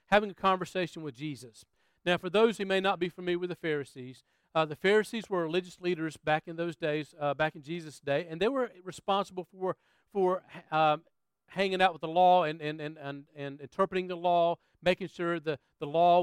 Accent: American